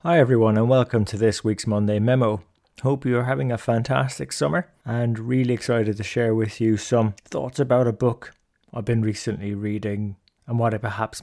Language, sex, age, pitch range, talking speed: English, male, 30-49, 105-125 Hz, 185 wpm